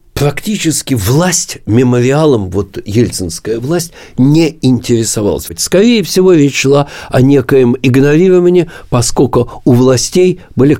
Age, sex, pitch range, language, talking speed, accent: 50-69, male, 100-155 Hz, Russian, 105 wpm, native